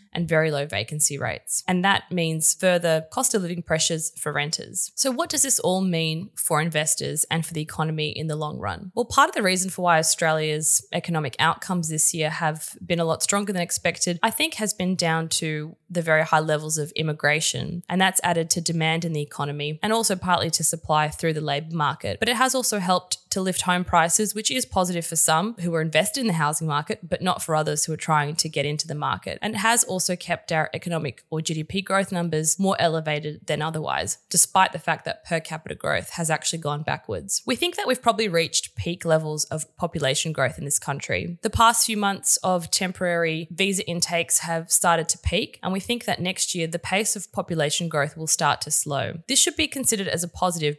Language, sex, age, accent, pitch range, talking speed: English, female, 20-39, Australian, 155-190 Hz, 220 wpm